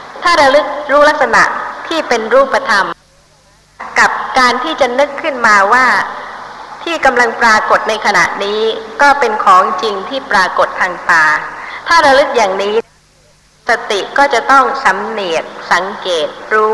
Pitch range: 220-295 Hz